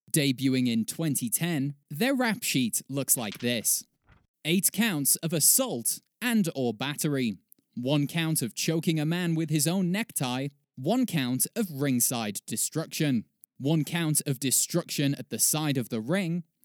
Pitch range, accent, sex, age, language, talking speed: 130-200 Hz, British, male, 20-39, English, 150 wpm